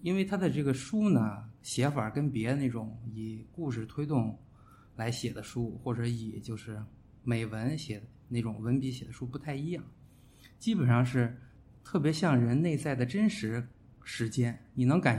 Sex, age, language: male, 20-39, Chinese